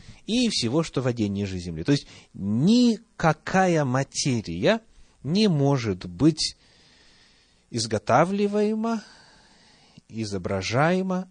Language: Russian